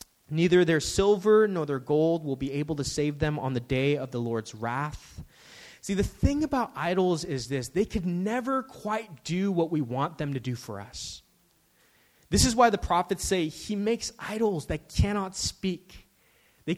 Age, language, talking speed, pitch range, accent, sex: 20-39, English, 185 wpm, 160-215 Hz, American, male